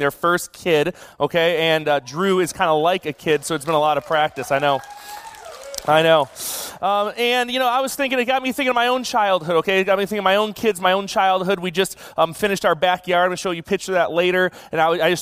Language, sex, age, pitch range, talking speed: English, male, 30-49, 160-205 Hz, 280 wpm